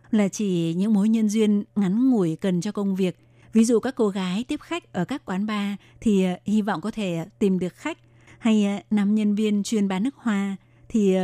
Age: 20-39